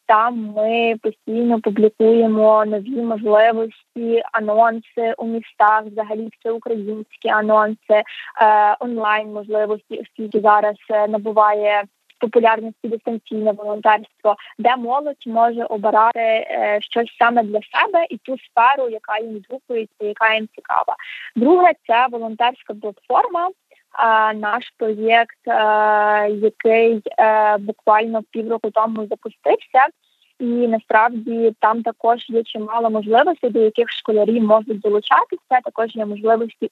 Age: 20-39